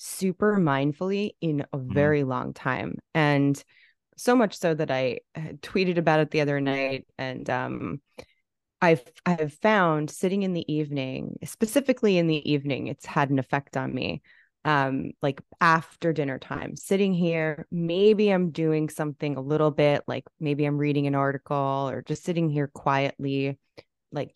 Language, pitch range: English, 135-165 Hz